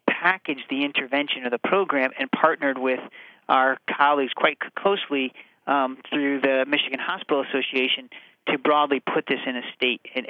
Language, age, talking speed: English, 40-59, 155 wpm